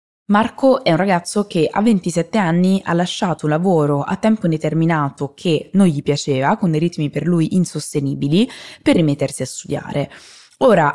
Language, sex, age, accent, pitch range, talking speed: Italian, female, 20-39, native, 145-195 Hz, 165 wpm